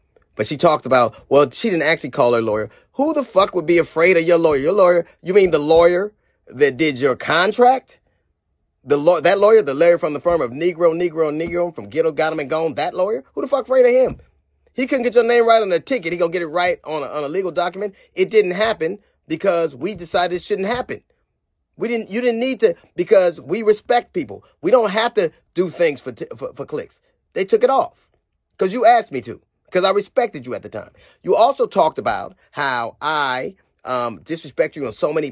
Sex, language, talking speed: male, English, 230 wpm